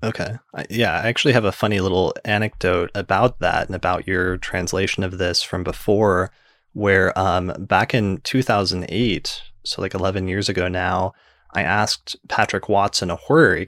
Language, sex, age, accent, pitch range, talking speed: English, male, 20-39, American, 90-105 Hz, 160 wpm